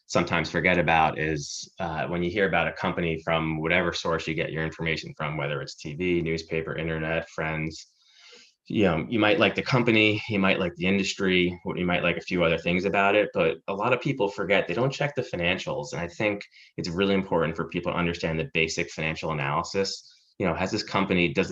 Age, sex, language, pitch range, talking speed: 20-39, male, English, 80-95 Hz, 215 wpm